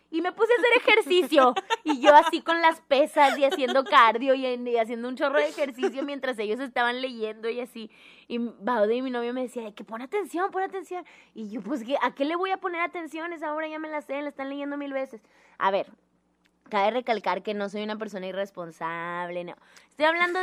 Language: Spanish